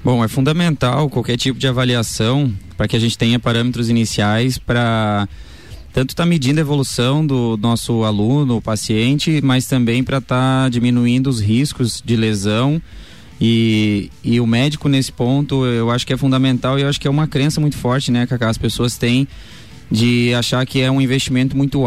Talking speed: 185 wpm